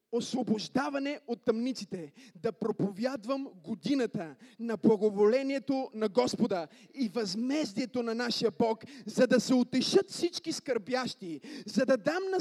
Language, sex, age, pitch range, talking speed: Bulgarian, male, 30-49, 255-330 Hz, 120 wpm